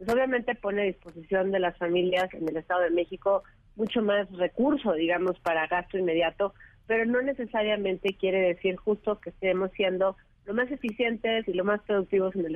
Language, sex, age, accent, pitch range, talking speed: Spanish, female, 40-59, Mexican, 185-220 Hz, 180 wpm